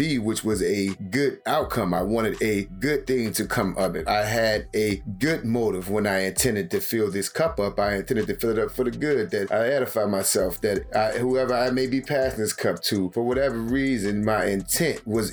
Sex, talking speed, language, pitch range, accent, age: male, 220 wpm, English, 105-130 Hz, American, 30-49